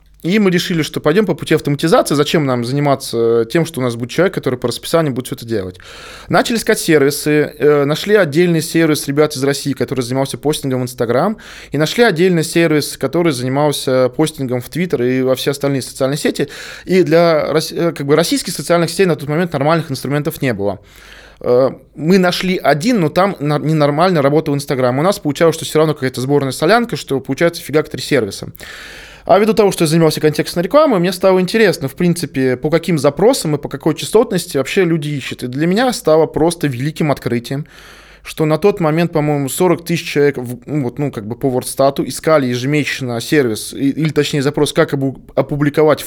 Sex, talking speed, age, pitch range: male, 180 wpm, 20-39, 135-170 Hz